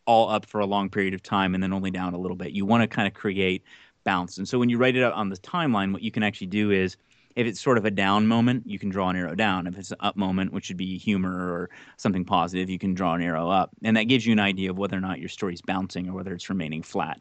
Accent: American